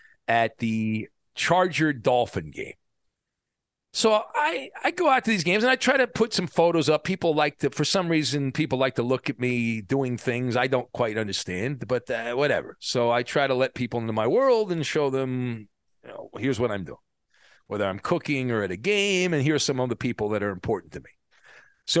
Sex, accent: male, American